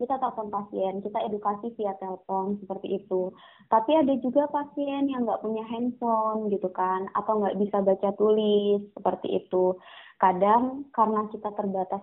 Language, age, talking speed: Indonesian, 20-39, 150 wpm